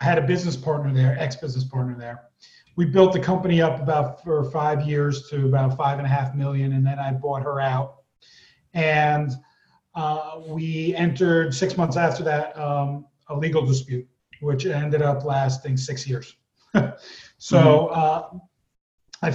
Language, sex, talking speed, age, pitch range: English, male, 160 wpm, 40-59, 145-180 Hz